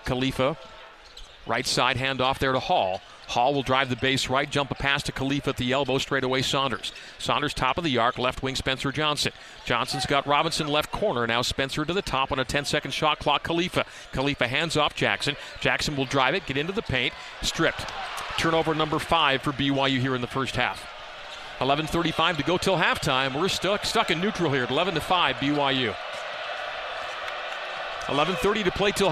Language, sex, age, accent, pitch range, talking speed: English, male, 40-59, American, 135-165 Hz, 190 wpm